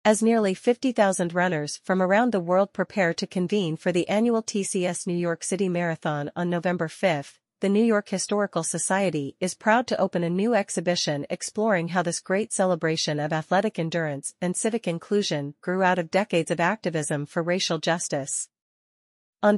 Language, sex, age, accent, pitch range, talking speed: English, female, 40-59, American, 165-200 Hz, 170 wpm